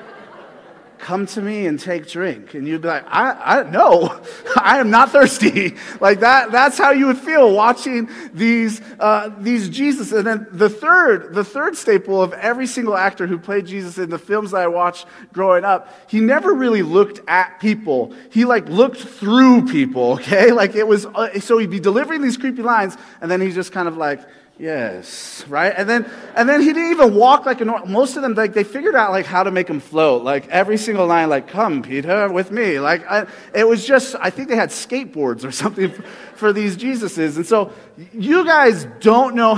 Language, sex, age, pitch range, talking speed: English, male, 30-49, 180-240 Hz, 205 wpm